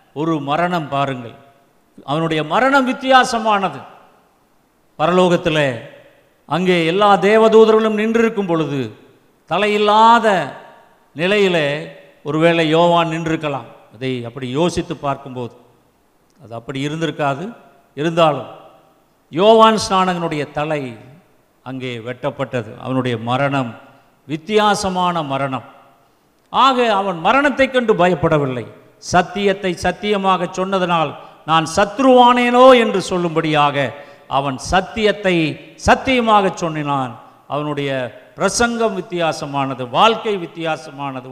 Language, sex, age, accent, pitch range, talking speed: Tamil, male, 50-69, native, 140-195 Hz, 80 wpm